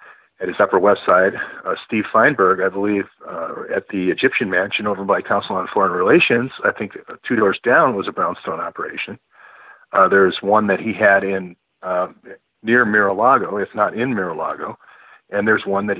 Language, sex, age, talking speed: English, male, 40-59, 180 wpm